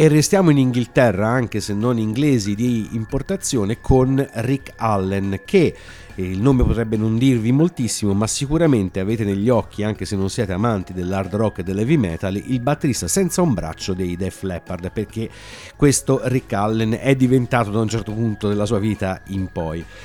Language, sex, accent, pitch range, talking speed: Italian, male, native, 95-125 Hz, 175 wpm